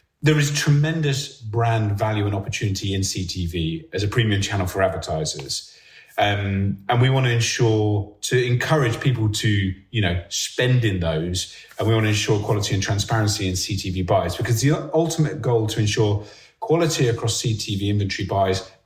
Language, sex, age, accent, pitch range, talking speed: Finnish, male, 30-49, British, 95-125 Hz, 165 wpm